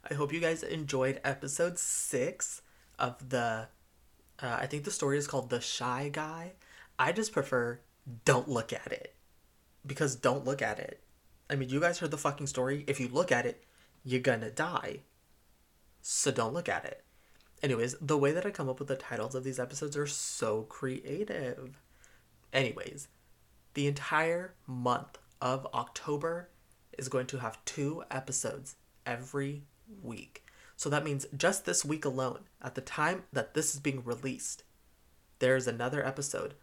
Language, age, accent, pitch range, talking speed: English, 20-39, American, 120-155 Hz, 165 wpm